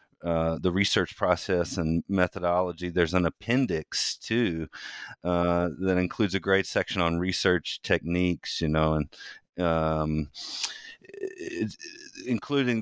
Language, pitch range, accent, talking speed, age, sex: English, 85-100 Hz, American, 110 wpm, 30-49, male